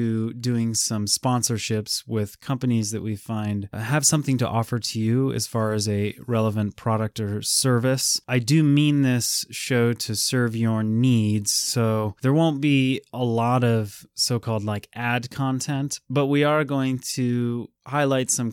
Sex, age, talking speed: male, 20-39, 160 wpm